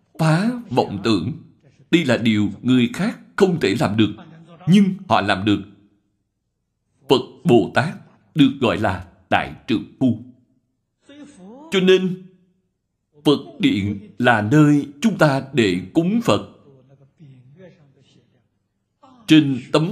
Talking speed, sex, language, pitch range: 115 wpm, male, Vietnamese, 110-160 Hz